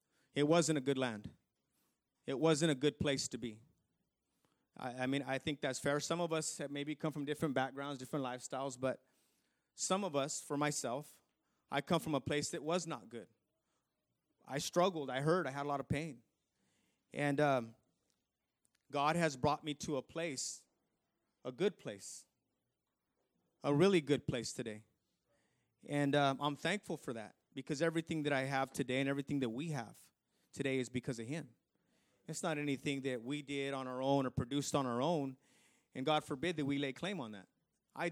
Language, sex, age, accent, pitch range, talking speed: English, male, 30-49, American, 130-155 Hz, 185 wpm